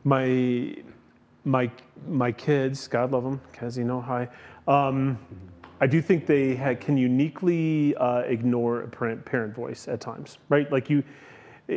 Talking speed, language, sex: 155 wpm, English, male